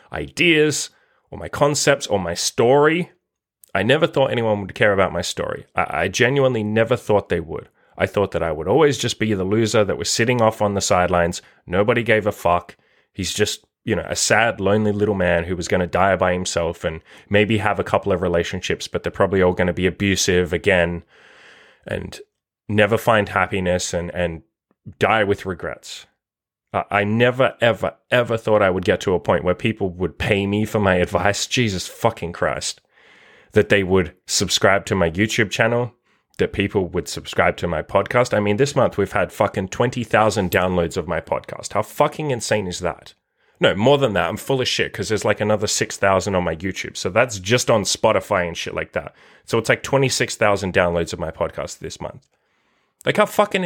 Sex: male